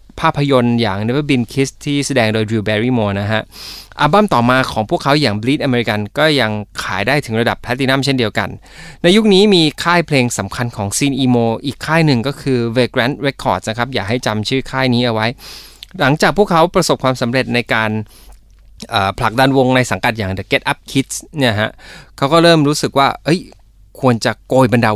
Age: 20-39